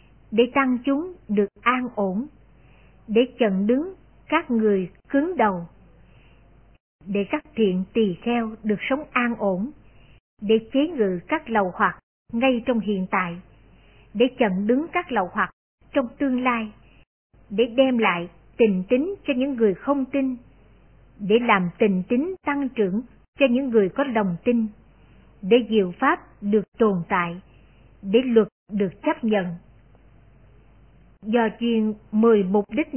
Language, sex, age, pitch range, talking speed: Vietnamese, male, 60-79, 200-255 Hz, 145 wpm